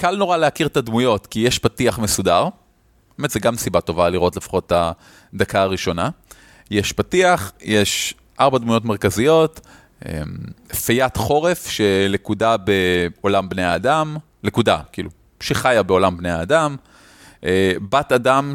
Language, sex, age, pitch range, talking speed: Hebrew, male, 30-49, 100-125 Hz, 125 wpm